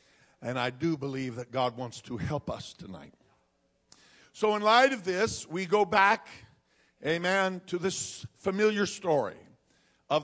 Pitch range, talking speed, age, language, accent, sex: 135-170 Hz, 145 wpm, 50-69, English, American, male